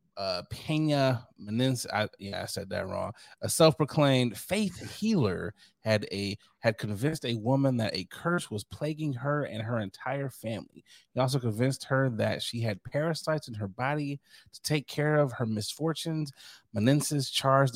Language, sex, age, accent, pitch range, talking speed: English, male, 30-49, American, 110-145 Hz, 160 wpm